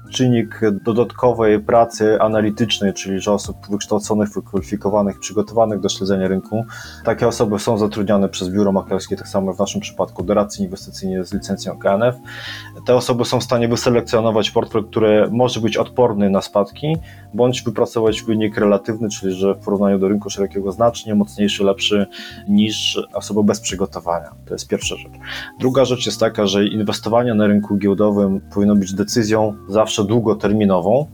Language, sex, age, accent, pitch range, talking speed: Polish, male, 20-39, native, 100-115 Hz, 150 wpm